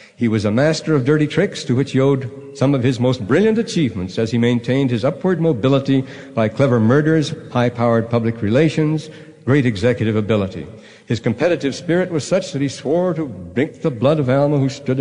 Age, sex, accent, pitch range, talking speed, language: 60-79, male, American, 120-160 Hz, 190 wpm, English